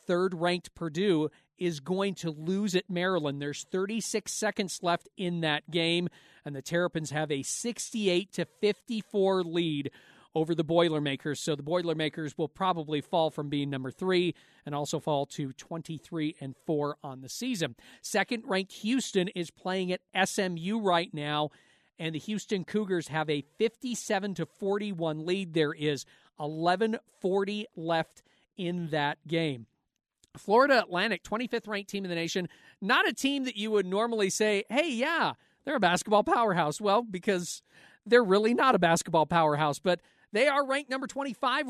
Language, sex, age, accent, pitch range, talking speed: English, male, 40-59, American, 160-215 Hz, 155 wpm